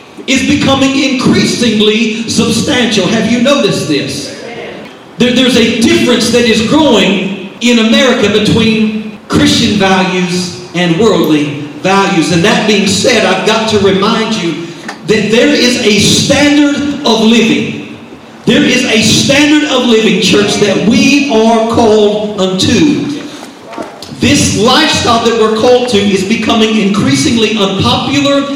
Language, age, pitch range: English, 40-59, 205-260 Hz